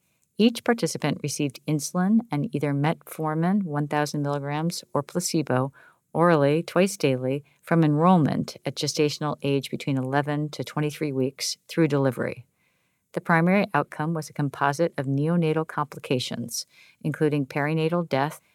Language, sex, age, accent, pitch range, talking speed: Hebrew, female, 50-69, American, 140-165 Hz, 125 wpm